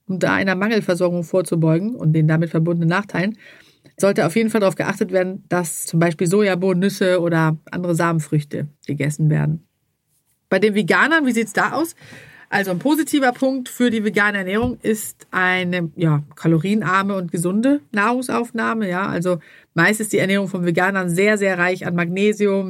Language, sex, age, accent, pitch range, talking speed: German, female, 40-59, German, 170-210 Hz, 165 wpm